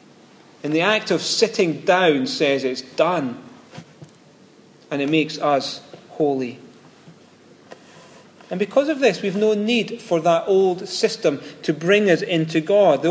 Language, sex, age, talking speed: English, male, 40-59, 140 wpm